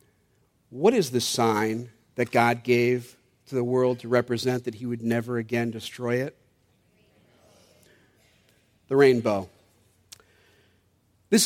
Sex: male